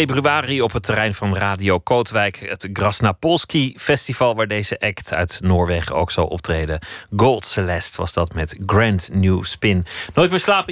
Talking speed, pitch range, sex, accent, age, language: 155 wpm, 90-110 Hz, male, Dutch, 30-49, Dutch